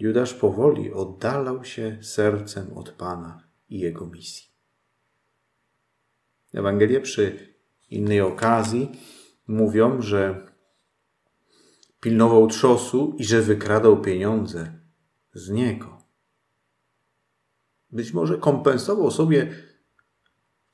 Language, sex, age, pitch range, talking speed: Polish, male, 40-59, 95-115 Hz, 85 wpm